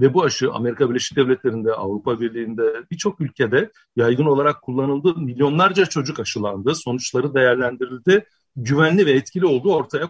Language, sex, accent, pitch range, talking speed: Turkish, male, native, 125-160 Hz, 135 wpm